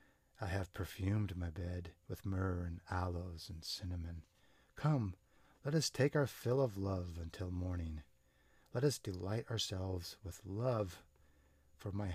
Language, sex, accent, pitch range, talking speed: English, male, American, 90-110 Hz, 145 wpm